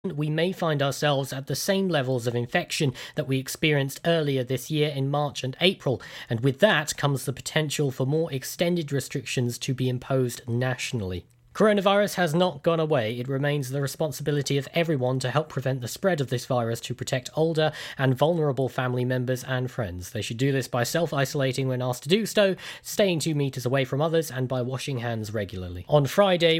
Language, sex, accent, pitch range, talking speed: English, male, British, 130-160 Hz, 195 wpm